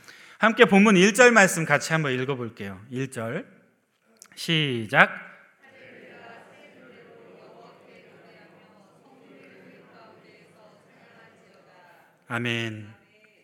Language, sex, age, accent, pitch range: Korean, male, 30-49, native, 155-225 Hz